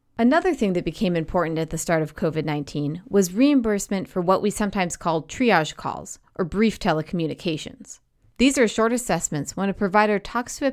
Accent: American